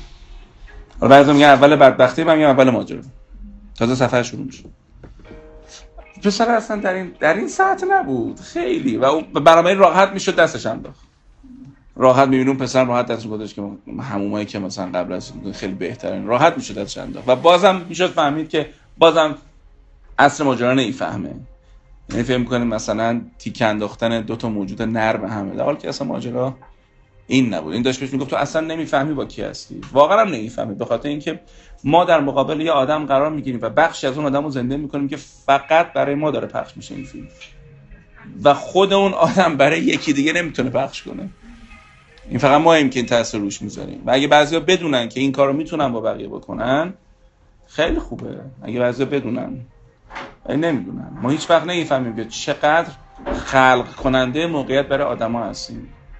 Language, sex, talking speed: Persian, male, 160 wpm